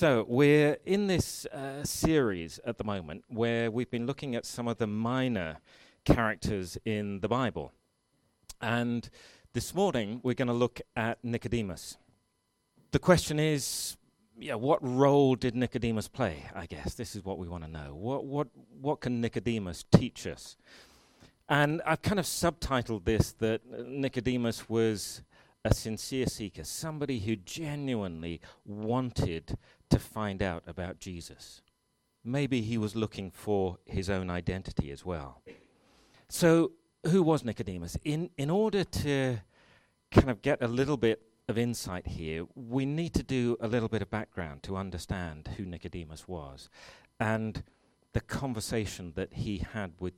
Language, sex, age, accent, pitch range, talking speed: English, male, 40-59, British, 95-130 Hz, 150 wpm